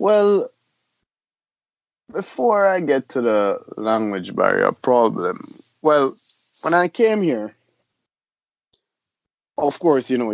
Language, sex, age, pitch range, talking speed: English, male, 30-49, 115-150 Hz, 105 wpm